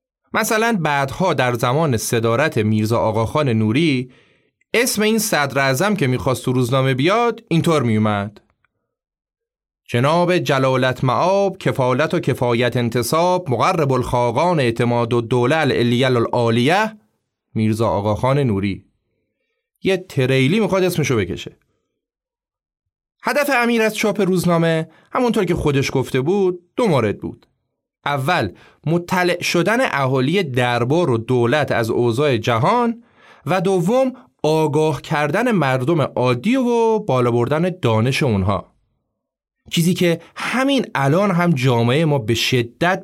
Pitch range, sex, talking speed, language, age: 120-180 Hz, male, 120 wpm, Persian, 30-49